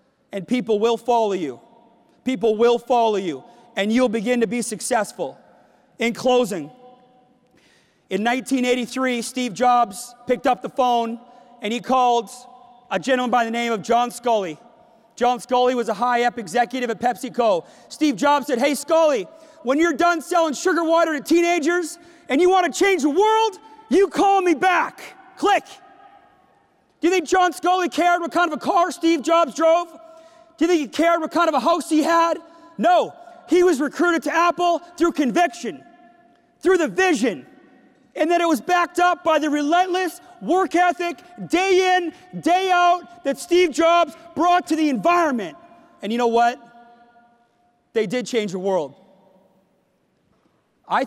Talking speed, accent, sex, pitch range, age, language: 160 wpm, American, male, 235-345 Hz, 30-49, English